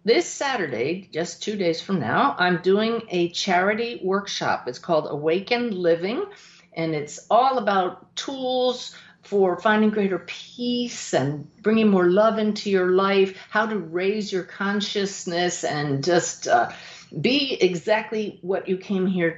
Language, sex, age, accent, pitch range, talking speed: English, female, 50-69, American, 160-205 Hz, 140 wpm